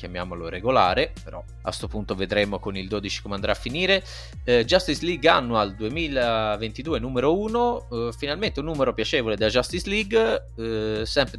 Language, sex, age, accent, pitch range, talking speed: Italian, male, 30-49, native, 105-140 Hz, 165 wpm